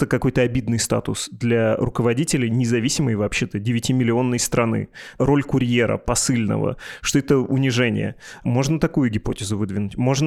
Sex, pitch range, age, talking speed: male, 115-135 Hz, 30-49, 125 wpm